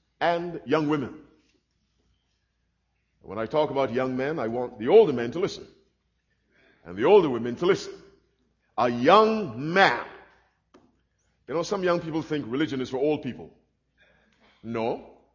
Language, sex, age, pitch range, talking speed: English, male, 50-69, 130-190 Hz, 145 wpm